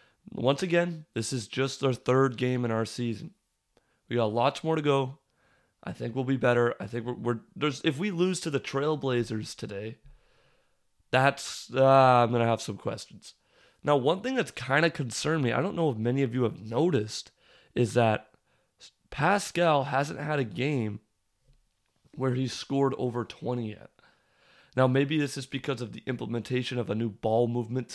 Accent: American